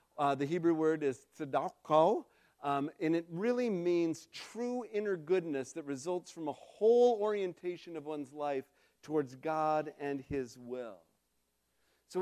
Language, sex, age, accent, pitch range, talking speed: English, male, 50-69, American, 145-180 Hz, 140 wpm